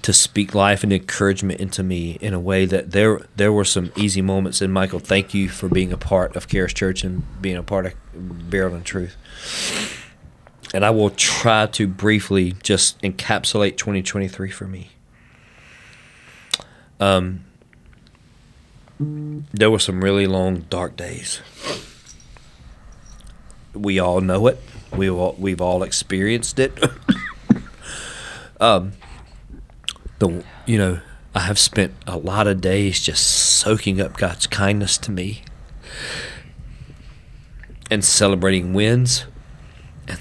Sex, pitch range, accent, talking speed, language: male, 95-115 Hz, American, 130 wpm, English